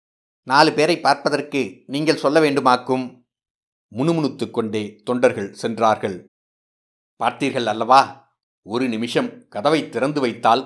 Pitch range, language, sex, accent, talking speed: 115-135 Hz, Tamil, male, native, 95 wpm